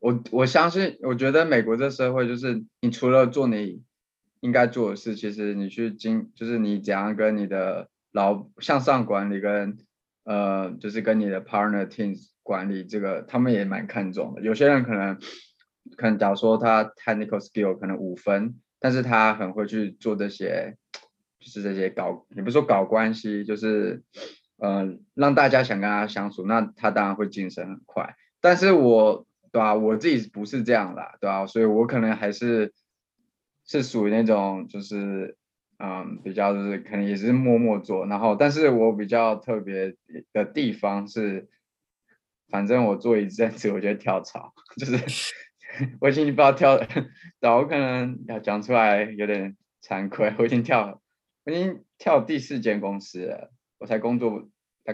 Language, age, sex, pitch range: Chinese, 20-39, male, 100-120 Hz